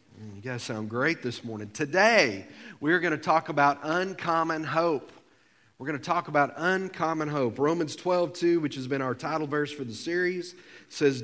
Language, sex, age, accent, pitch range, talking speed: English, male, 40-59, American, 135-180 Hz, 180 wpm